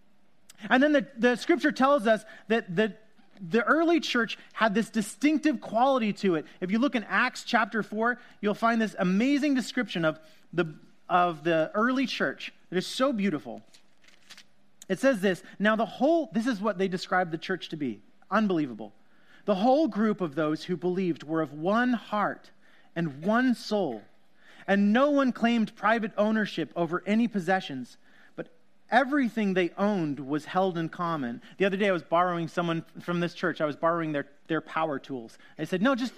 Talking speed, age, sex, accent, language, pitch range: 175 wpm, 30-49, male, American, English, 175-230 Hz